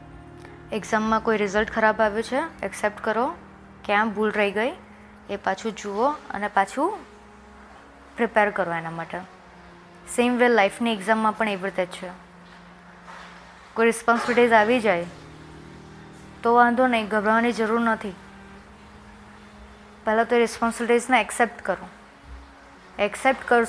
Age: 20-39